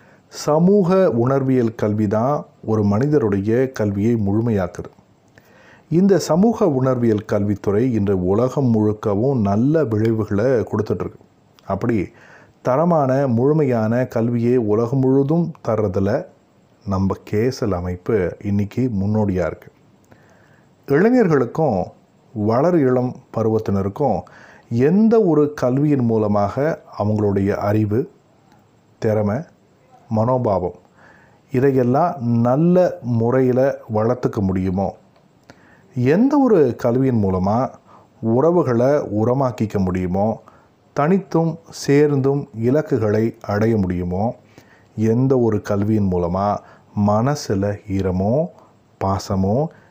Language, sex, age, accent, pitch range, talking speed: Tamil, male, 30-49, native, 105-135 Hz, 80 wpm